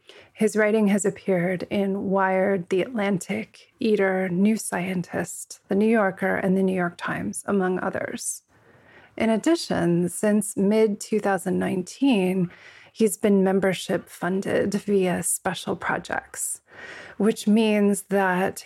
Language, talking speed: English, 110 wpm